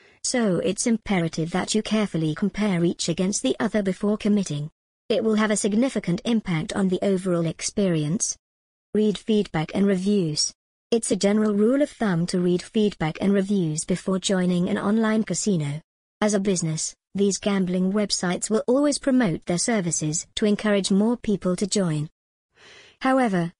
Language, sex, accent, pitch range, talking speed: English, male, British, 180-215 Hz, 155 wpm